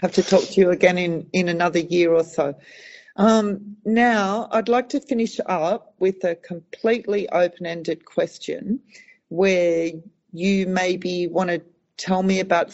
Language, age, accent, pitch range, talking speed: English, 40-59, Australian, 160-185 Hz, 155 wpm